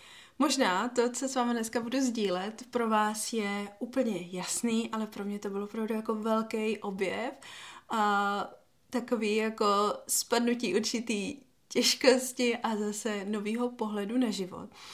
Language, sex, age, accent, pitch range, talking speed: Czech, female, 30-49, native, 210-250 Hz, 135 wpm